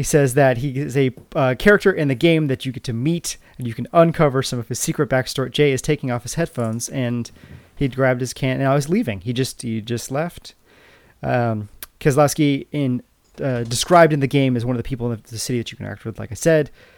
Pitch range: 115-145 Hz